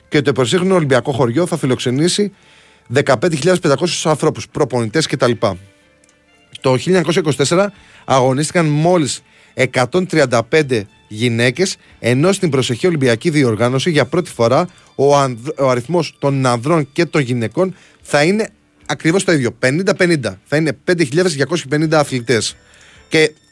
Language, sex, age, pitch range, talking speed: Greek, male, 20-39, 125-165 Hz, 110 wpm